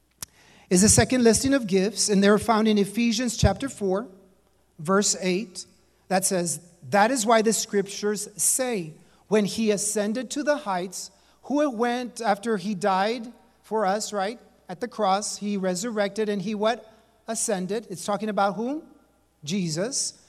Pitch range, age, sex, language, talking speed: 195-245 Hz, 40-59, male, English, 155 wpm